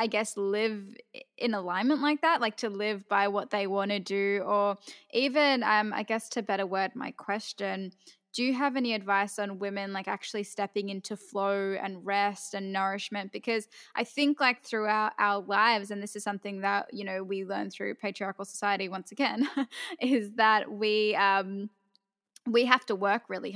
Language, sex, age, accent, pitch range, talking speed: English, female, 10-29, Australian, 200-230 Hz, 185 wpm